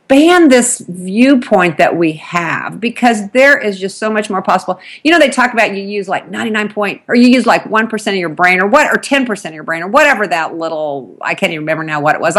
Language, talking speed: English, 240 wpm